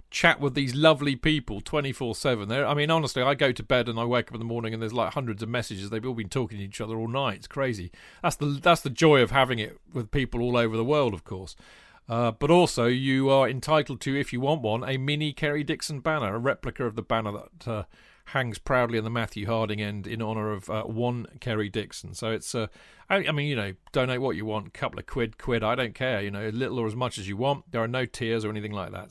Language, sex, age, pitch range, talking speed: English, male, 40-59, 115-145 Hz, 270 wpm